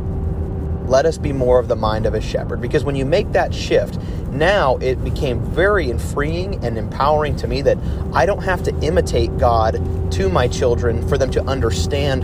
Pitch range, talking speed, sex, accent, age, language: 85-130 Hz, 190 wpm, male, American, 30-49, English